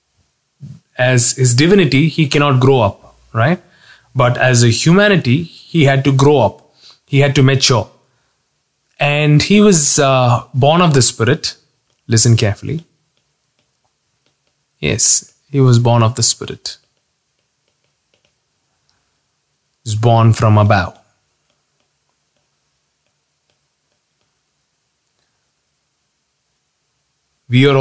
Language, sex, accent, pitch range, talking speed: English, male, Indian, 115-140 Hz, 95 wpm